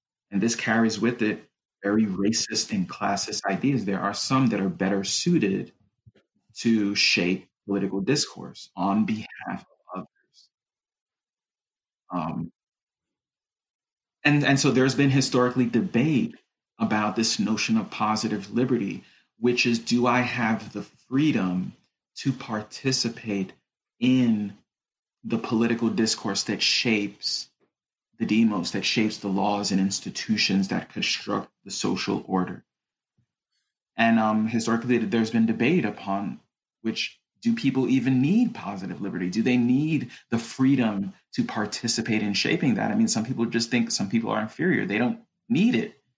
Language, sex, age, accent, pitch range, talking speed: English, male, 40-59, American, 105-130 Hz, 135 wpm